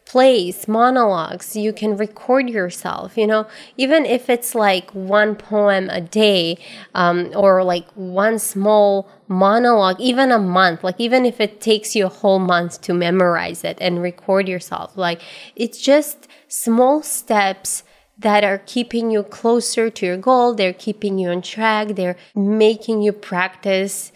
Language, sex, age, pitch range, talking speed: English, female, 20-39, 185-225 Hz, 155 wpm